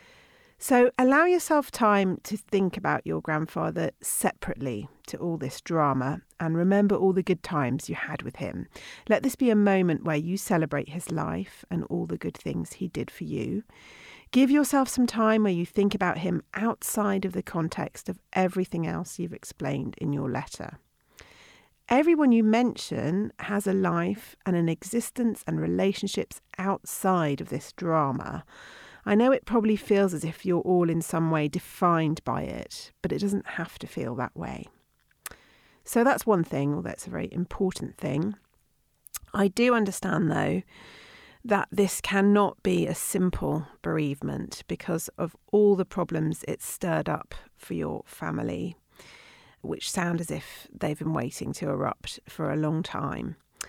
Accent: British